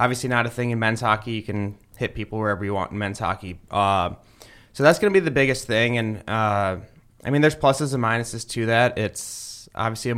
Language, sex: English, male